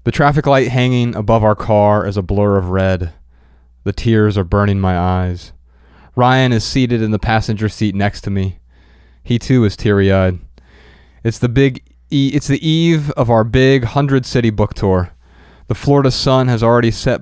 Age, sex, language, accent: 20-39, male, English, American